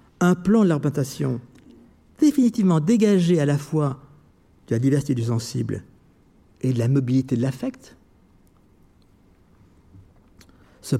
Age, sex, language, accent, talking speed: 60-79, male, French, French, 115 wpm